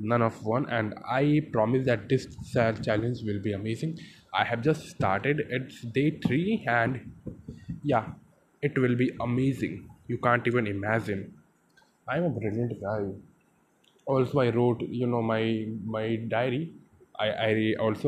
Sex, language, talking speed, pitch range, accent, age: male, Hindi, 155 wpm, 105-125 Hz, native, 10-29